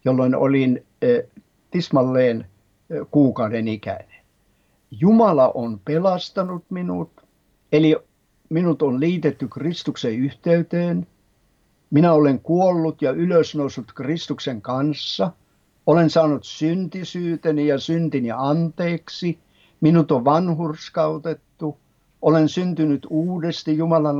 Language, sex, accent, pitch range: Finnish, male, native, 125-165 Hz